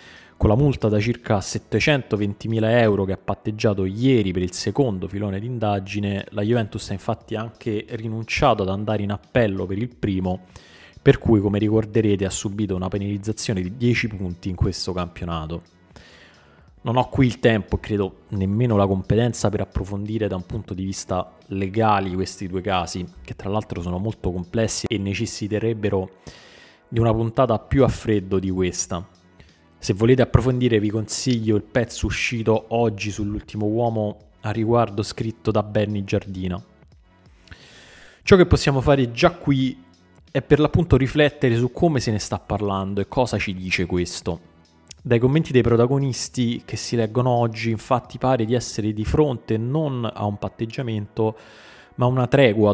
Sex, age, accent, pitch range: male, 20-39, native, 95-120 Hz